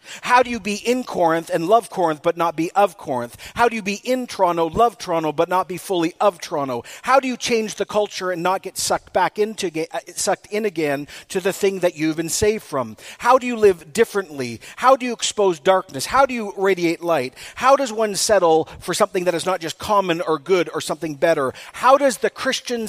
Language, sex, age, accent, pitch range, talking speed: English, male, 40-59, American, 155-200 Hz, 225 wpm